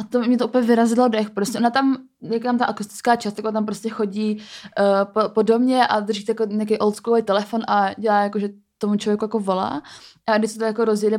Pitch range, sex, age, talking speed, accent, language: 205-230 Hz, female, 20-39, 220 wpm, native, Czech